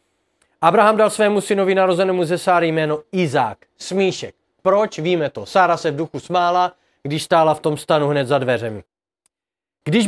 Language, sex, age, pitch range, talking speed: Czech, male, 40-59, 150-195 Hz, 160 wpm